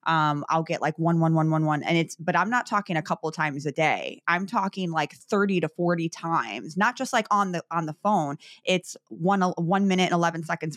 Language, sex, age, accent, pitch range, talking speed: English, female, 20-39, American, 160-185 Hz, 240 wpm